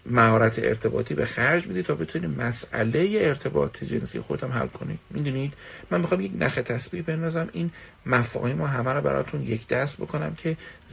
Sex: male